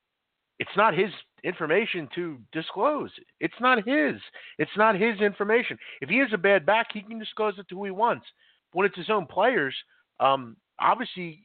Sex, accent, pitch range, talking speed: male, American, 115-165 Hz, 180 wpm